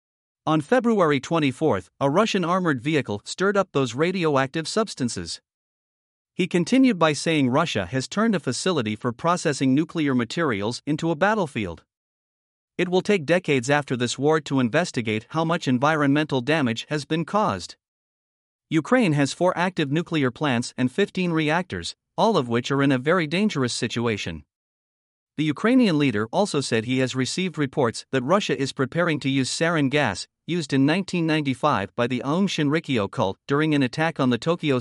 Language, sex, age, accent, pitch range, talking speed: English, male, 50-69, American, 130-170 Hz, 160 wpm